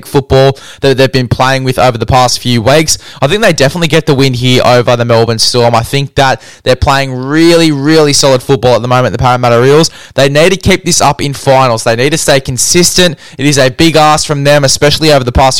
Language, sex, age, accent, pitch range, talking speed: English, male, 10-29, Australian, 125-145 Hz, 240 wpm